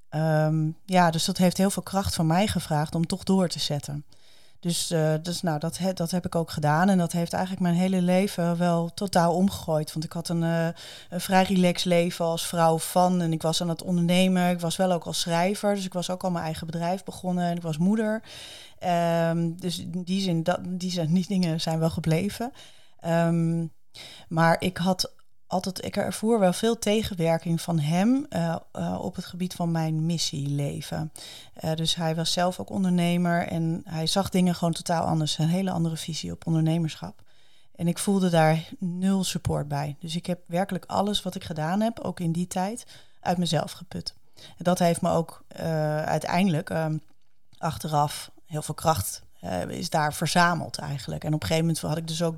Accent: Dutch